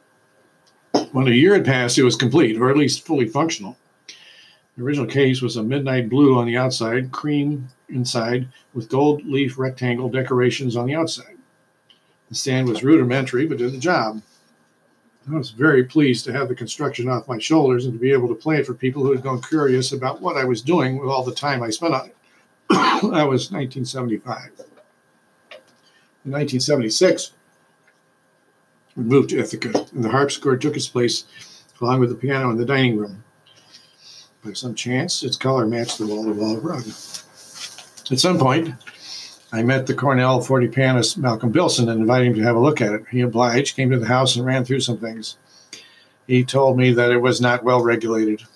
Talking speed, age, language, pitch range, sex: 190 wpm, 60-79, English, 120-135 Hz, male